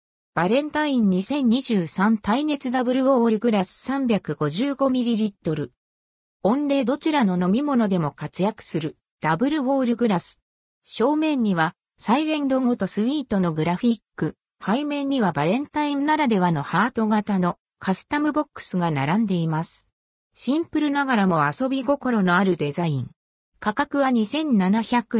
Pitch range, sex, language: 180-265 Hz, female, Japanese